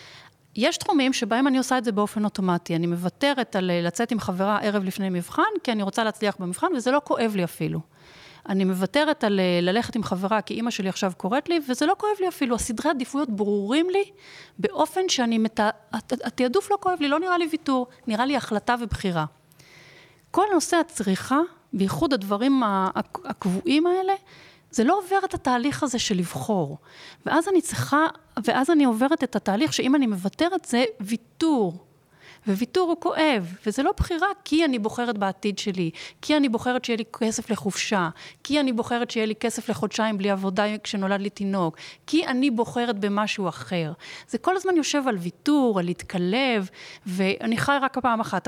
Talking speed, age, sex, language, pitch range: 170 wpm, 30-49, female, Hebrew, 195-285 Hz